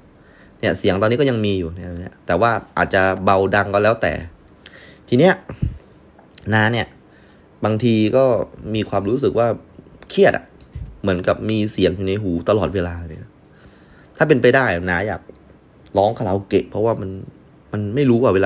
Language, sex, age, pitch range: Thai, male, 20-39, 85-115 Hz